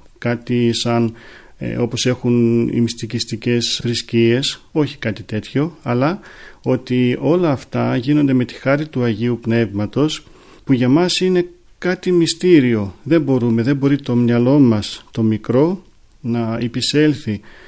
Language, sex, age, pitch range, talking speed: Greek, male, 40-59, 115-150 Hz, 130 wpm